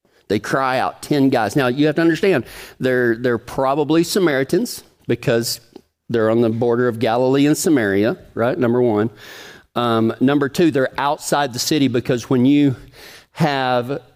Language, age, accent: English, 40-59, American